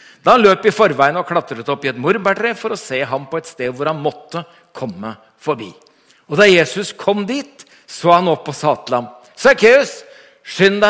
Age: 60-79